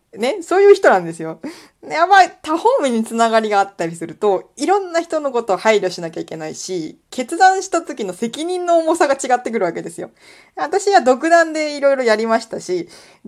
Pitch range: 180-275 Hz